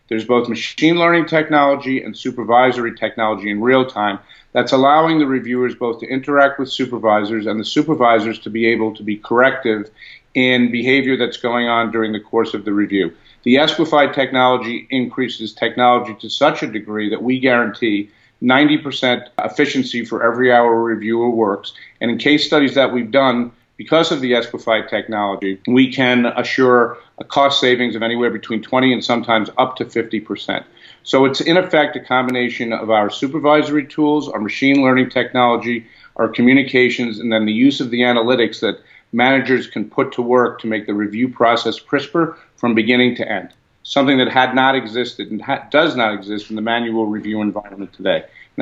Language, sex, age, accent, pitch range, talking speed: English, male, 50-69, American, 110-130 Hz, 175 wpm